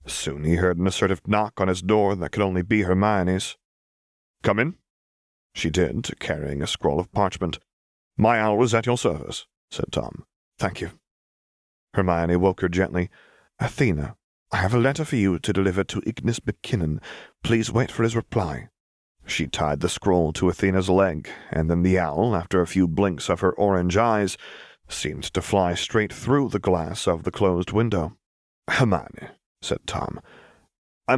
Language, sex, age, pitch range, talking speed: English, male, 30-49, 85-105 Hz, 170 wpm